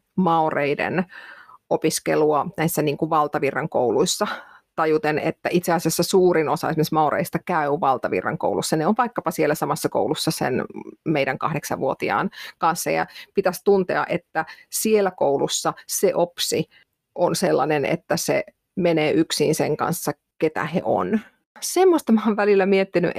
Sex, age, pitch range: female, 30-49, 165-205 Hz